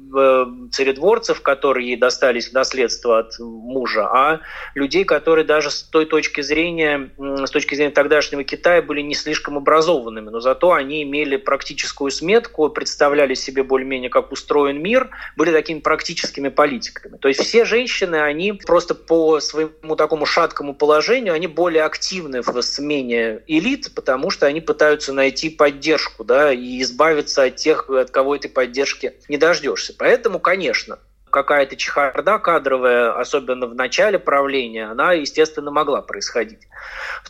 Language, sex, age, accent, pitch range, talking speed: Russian, male, 20-39, native, 135-160 Hz, 140 wpm